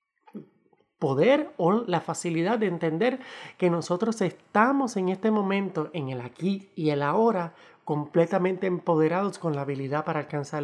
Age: 30-49